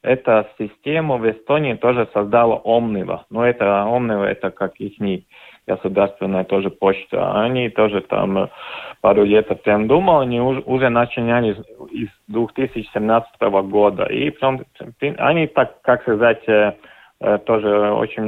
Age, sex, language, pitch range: 30-49, male, Russian, 105-130 Hz